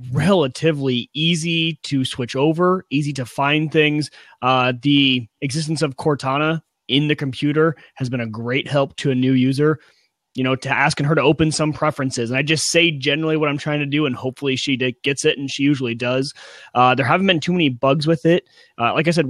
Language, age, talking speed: English, 30-49, 210 wpm